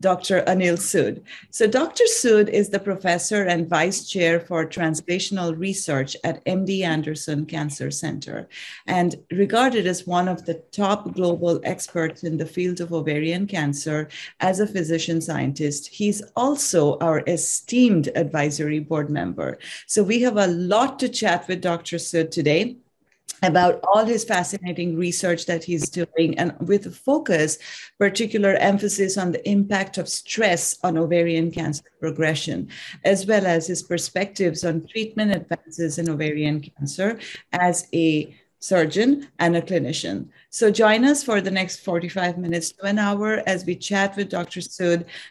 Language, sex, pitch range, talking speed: English, female, 165-200 Hz, 150 wpm